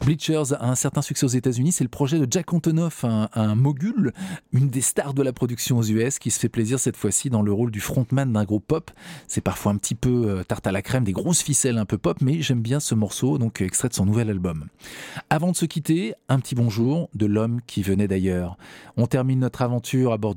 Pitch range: 110-145 Hz